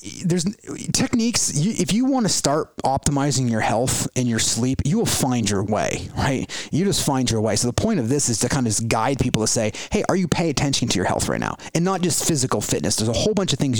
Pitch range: 115-145 Hz